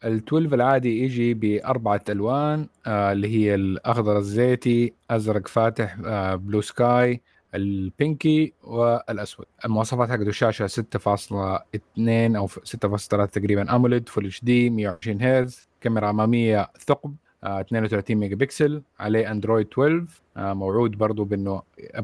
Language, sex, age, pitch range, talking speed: Arabic, male, 30-49, 105-125 Hz, 115 wpm